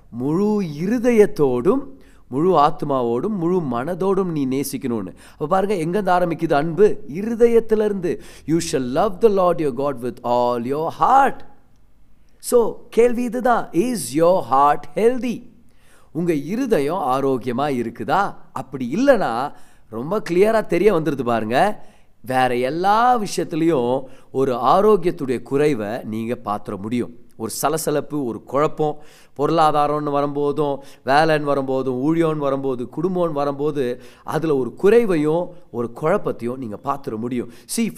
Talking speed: 115 wpm